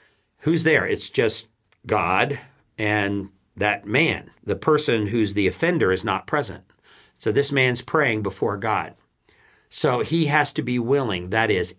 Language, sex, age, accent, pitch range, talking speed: English, male, 60-79, American, 100-140 Hz, 155 wpm